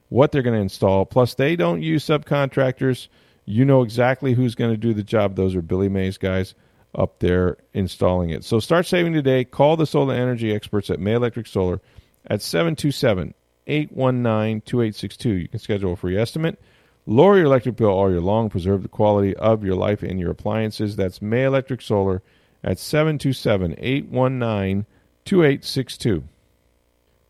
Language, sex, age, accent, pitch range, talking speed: English, male, 40-59, American, 90-120 Hz, 155 wpm